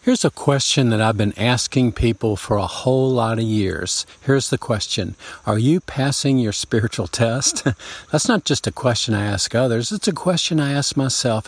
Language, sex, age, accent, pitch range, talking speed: English, male, 50-69, American, 110-155 Hz, 195 wpm